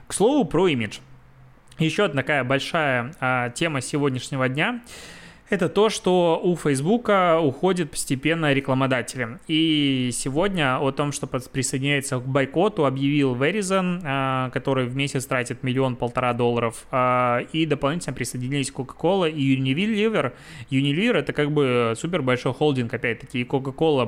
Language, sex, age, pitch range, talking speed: Russian, male, 20-39, 130-155 Hz, 125 wpm